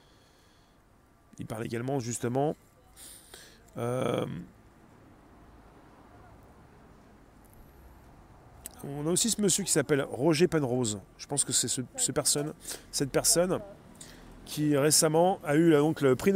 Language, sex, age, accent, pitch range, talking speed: French, male, 30-49, French, 120-155 Hz, 95 wpm